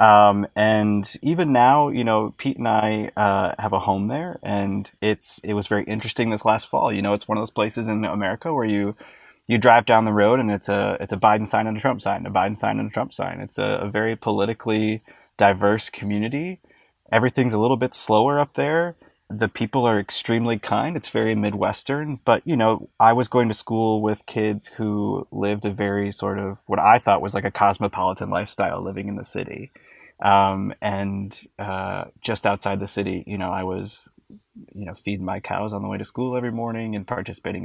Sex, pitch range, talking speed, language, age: male, 100-115 Hz, 210 wpm, English, 20-39